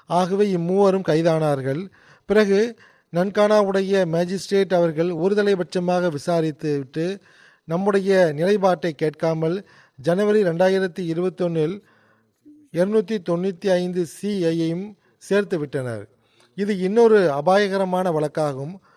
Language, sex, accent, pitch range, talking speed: Tamil, male, native, 165-195 Hz, 75 wpm